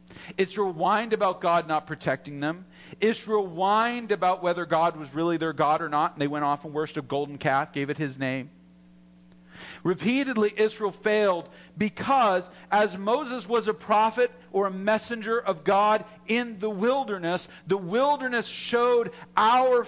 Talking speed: 155 wpm